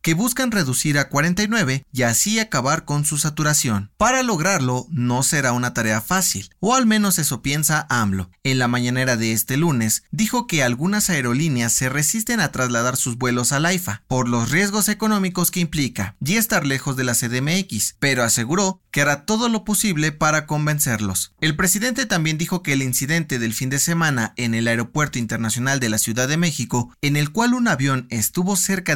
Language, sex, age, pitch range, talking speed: Spanish, male, 30-49, 120-185 Hz, 190 wpm